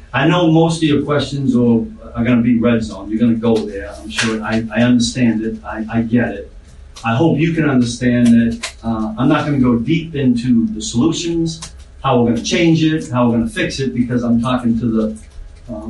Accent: American